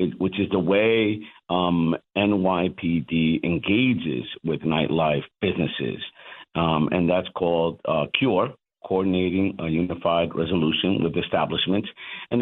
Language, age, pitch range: English, 50-69, 90-100 Hz